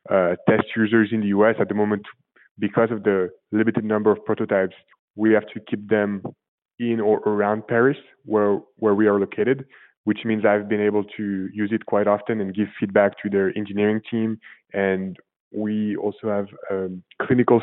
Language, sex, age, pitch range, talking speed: English, male, 20-39, 100-110 Hz, 180 wpm